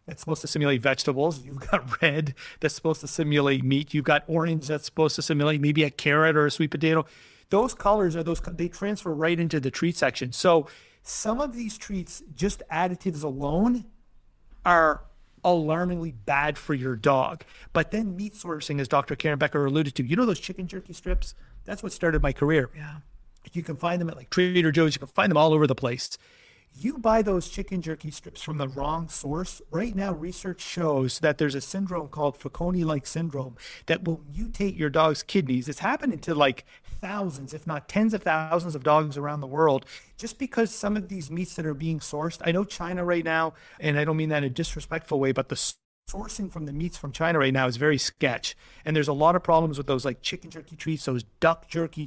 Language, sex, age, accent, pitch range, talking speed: English, male, 40-59, American, 150-175 Hz, 215 wpm